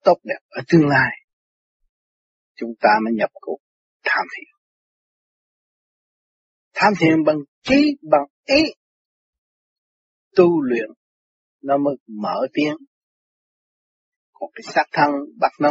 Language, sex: Vietnamese, male